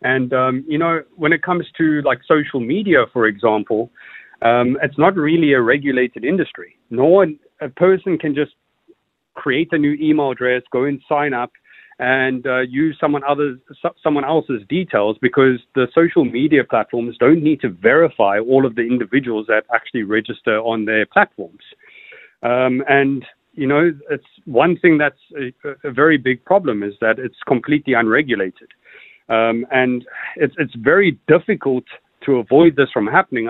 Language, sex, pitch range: English, male, 125-160 Hz